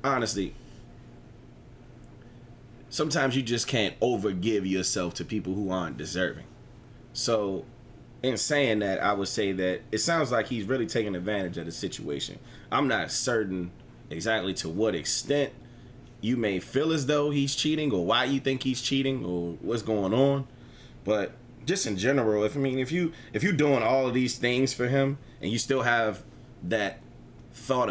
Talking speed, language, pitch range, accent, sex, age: 170 wpm, English, 105-135 Hz, American, male, 20-39